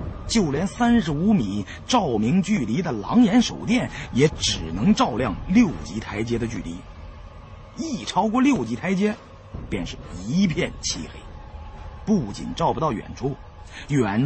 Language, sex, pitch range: Chinese, male, 90-130 Hz